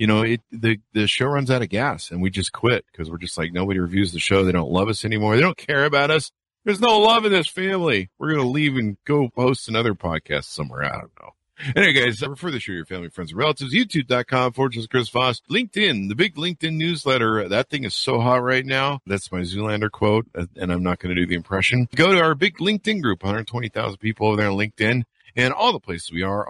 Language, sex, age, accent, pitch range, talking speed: English, male, 50-69, American, 95-140 Hz, 245 wpm